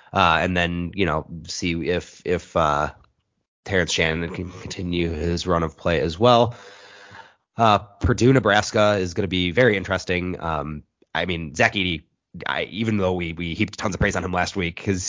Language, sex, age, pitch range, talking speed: English, male, 30-49, 85-100 Hz, 185 wpm